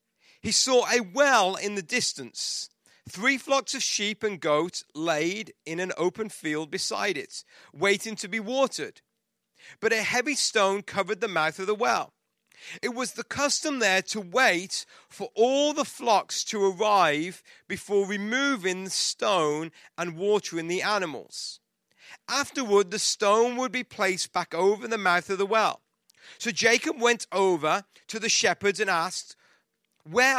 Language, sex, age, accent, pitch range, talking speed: English, male, 40-59, British, 185-255 Hz, 155 wpm